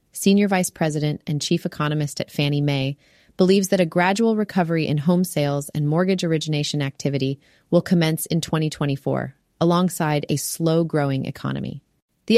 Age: 30-49